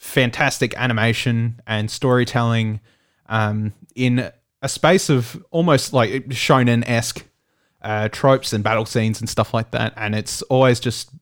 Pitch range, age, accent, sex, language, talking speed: 110-130 Hz, 20-39, Australian, male, English, 130 wpm